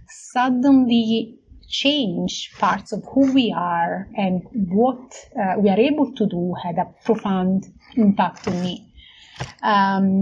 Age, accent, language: 30-49, Italian, English